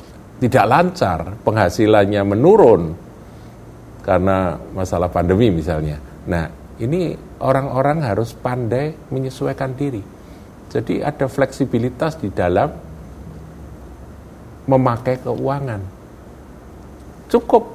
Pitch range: 85-130 Hz